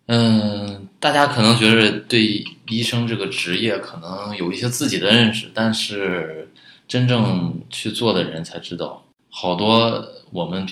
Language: Chinese